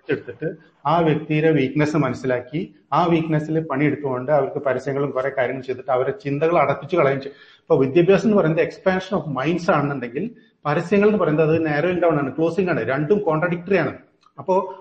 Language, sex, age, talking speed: Malayalam, male, 40-59, 145 wpm